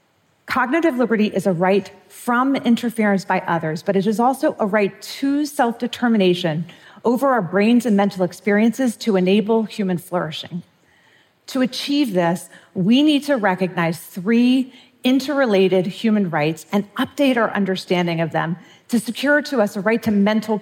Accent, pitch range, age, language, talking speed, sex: American, 185-245 Hz, 40-59, English, 150 wpm, female